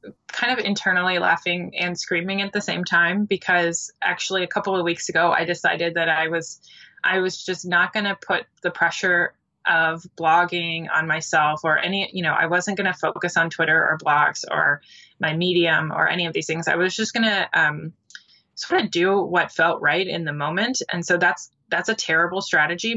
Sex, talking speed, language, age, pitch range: female, 205 wpm, English, 20-39, 165-195 Hz